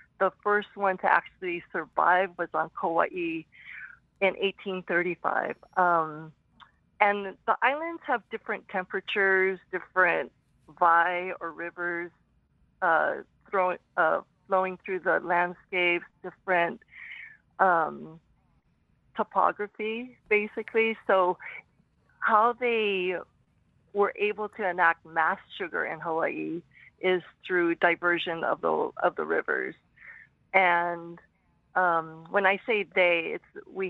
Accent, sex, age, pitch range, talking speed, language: American, female, 50-69, 170-205 Hz, 105 wpm, English